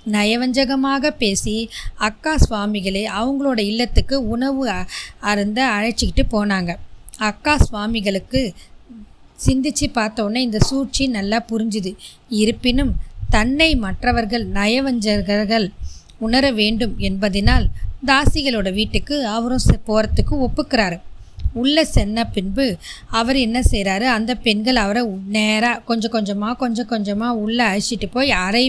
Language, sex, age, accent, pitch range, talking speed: Tamil, female, 20-39, native, 210-265 Hz, 100 wpm